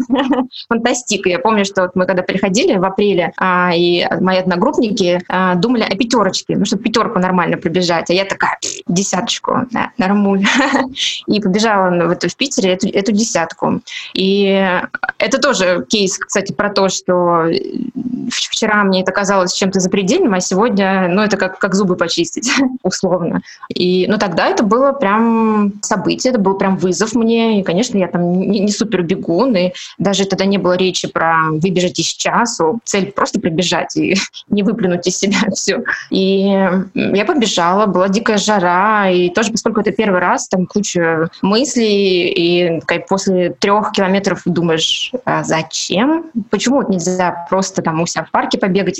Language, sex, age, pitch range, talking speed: Russian, female, 20-39, 185-220 Hz, 155 wpm